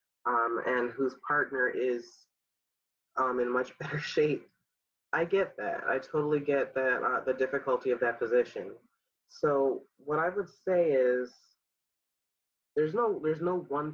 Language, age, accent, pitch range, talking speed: English, 30-49, American, 125-155 Hz, 145 wpm